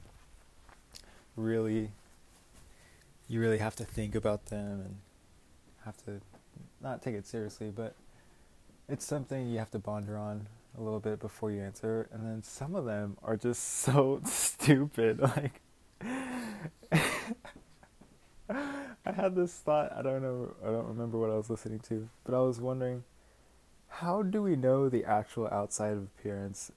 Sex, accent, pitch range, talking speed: male, American, 100-125 Hz, 150 wpm